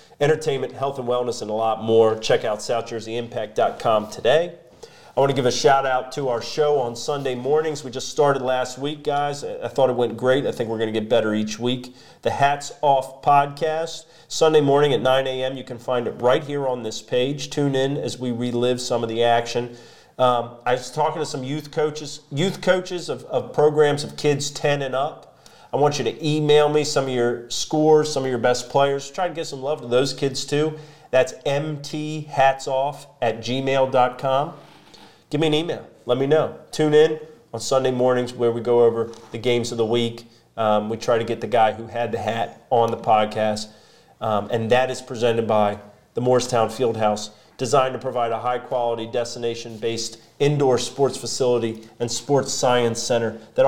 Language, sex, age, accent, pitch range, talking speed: English, male, 40-59, American, 120-145 Hz, 195 wpm